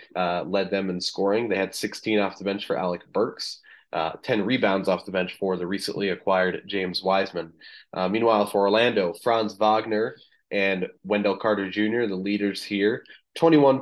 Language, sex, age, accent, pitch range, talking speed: English, male, 20-39, American, 95-110 Hz, 175 wpm